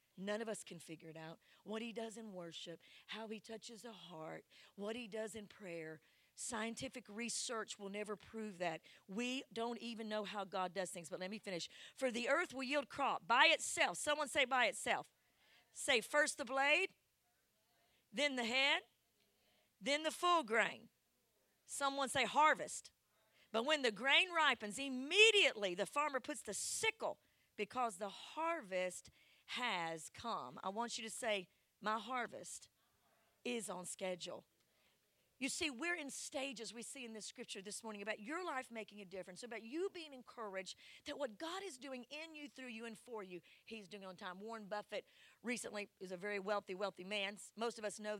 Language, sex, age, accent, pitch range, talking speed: English, female, 40-59, American, 205-260 Hz, 180 wpm